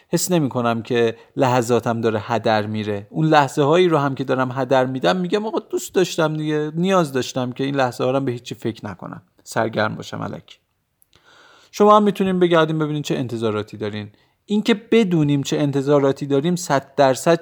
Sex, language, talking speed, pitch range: male, Persian, 180 wpm, 125-190 Hz